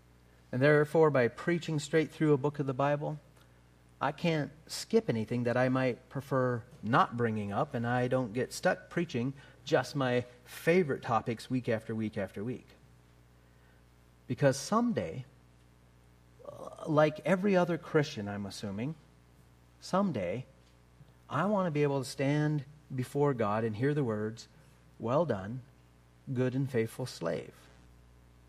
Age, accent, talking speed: 40-59, American, 135 wpm